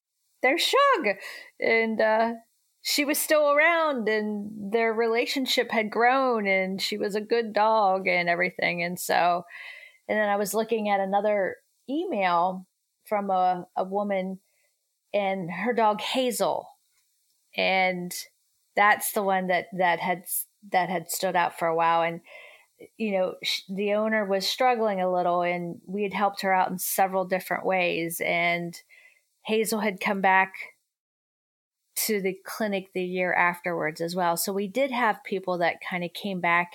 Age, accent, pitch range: 40-59, American, 180-220 Hz